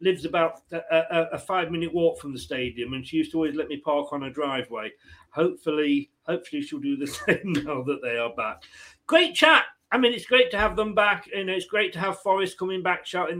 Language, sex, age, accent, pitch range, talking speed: English, male, 40-59, British, 165-225 Hz, 235 wpm